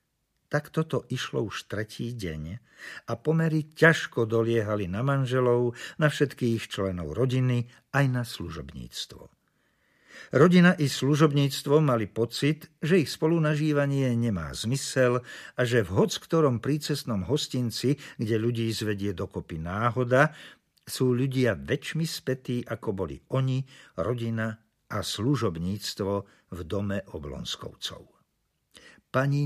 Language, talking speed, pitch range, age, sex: Slovak, 110 wpm, 105-140 Hz, 50-69, male